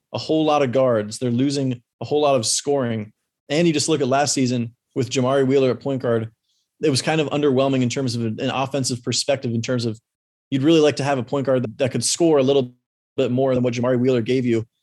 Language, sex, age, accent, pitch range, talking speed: English, male, 20-39, American, 120-140 Hz, 245 wpm